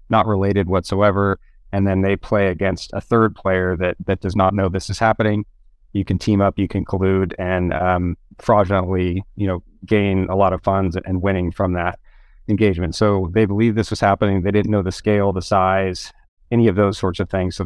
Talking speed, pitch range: 205 wpm, 90-100 Hz